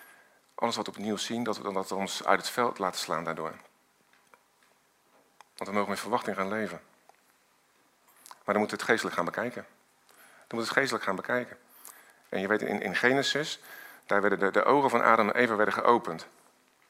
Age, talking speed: 50-69, 190 wpm